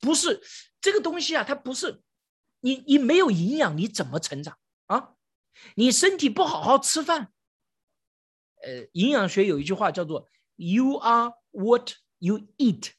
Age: 50-69